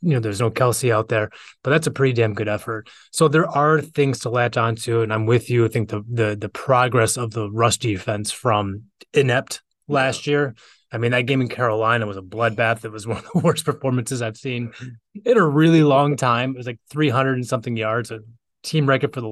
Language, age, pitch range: English, 20-39, 105-125 Hz